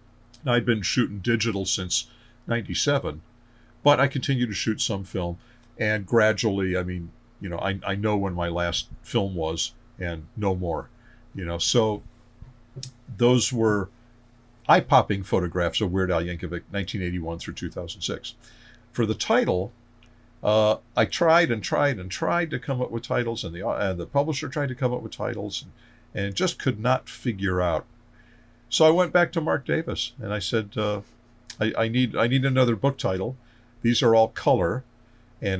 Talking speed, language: 170 wpm, English